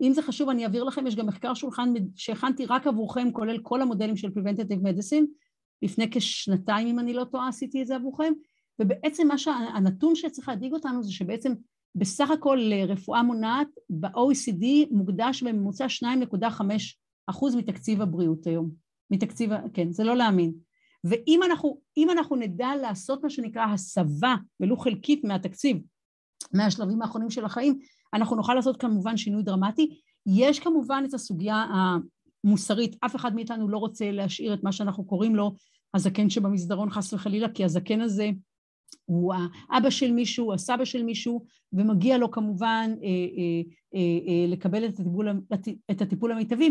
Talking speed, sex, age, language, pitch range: 150 wpm, female, 50-69, Hebrew, 200-255 Hz